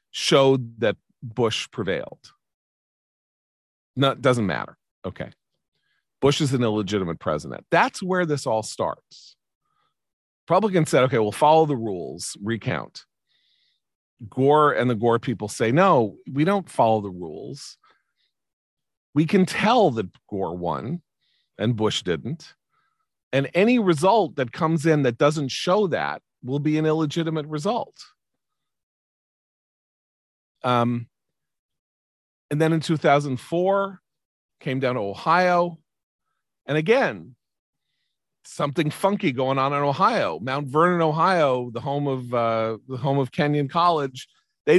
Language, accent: English, American